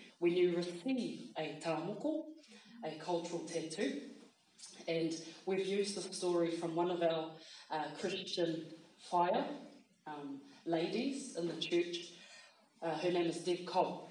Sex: female